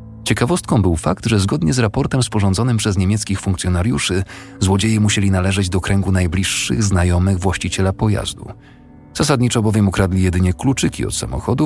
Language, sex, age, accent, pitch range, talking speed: Polish, male, 40-59, native, 80-105 Hz, 140 wpm